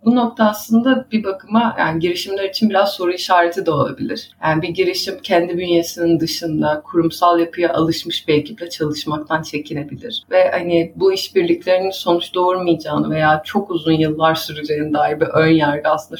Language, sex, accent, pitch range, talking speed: Turkish, female, native, 150-185 Hz, 155 wpm